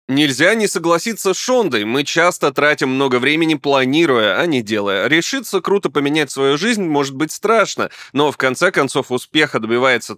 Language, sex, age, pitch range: Russian, male, 20-39, 120-165 Hz